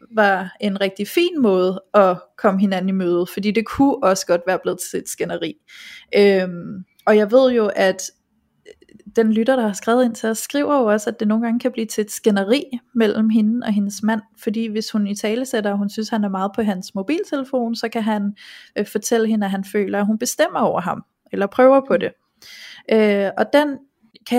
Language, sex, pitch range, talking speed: Danish, female, 205-245 Hz, 215 wpm